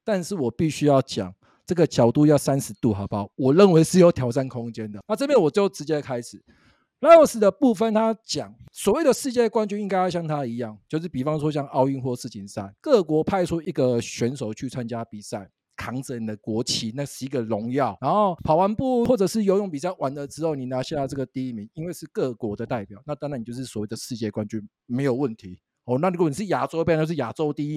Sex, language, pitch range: male, Chinese, 120-185 Hz